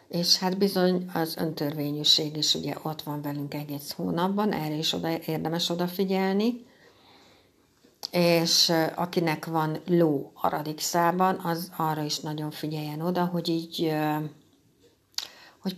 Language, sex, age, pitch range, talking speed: Hungarian, female, 60-79, 155-180 Hz, 120 wpm